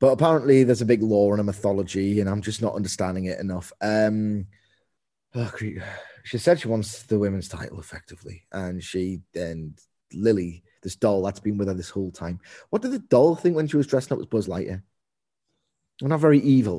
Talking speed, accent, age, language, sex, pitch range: 195 wpm, British, 20-39, English, male, 95-115 Hz